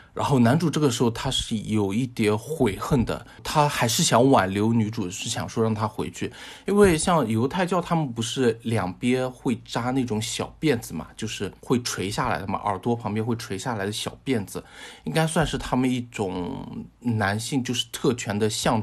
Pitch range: 105-125 Hz